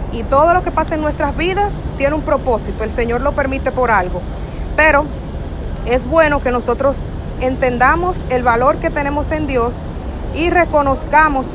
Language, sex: Spanish, female